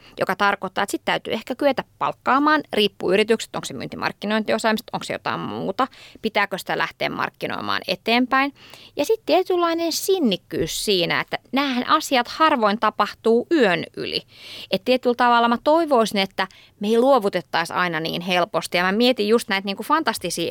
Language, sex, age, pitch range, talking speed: Finnish, female, 20-39, 185-245 Hz, 160 wpm